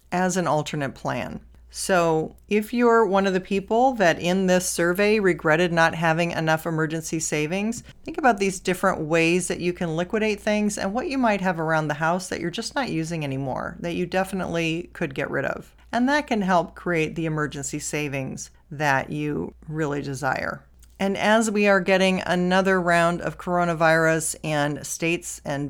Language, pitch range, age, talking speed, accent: English, 155-185 Hz, 40-59, 175 wpm, American